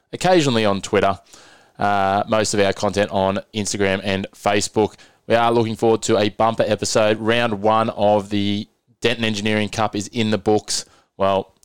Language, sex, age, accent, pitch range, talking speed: English, male, 20-39, Australian, 100-110 Hz, 165 wpm